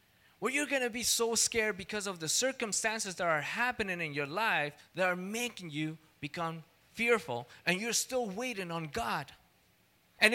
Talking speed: 175 wpm